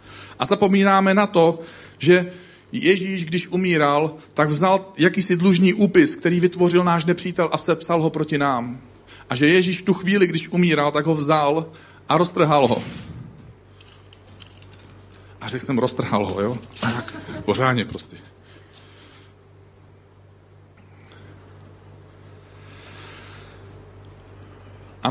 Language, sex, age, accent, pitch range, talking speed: Czech, male, 40-59, native, 105-175 Hz, 110 wpm